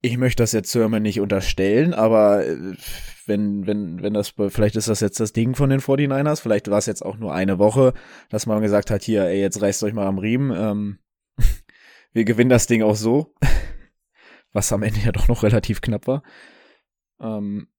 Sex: male